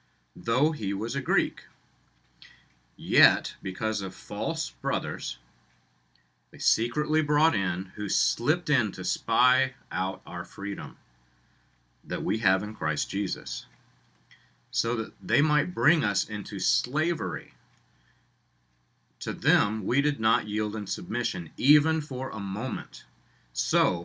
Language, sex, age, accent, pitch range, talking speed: English, male, 40-59, American, 100-155 Hz, 120 wpm